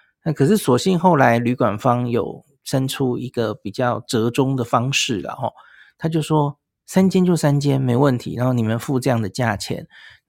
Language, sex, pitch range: Chinese, male, 120-150 Hz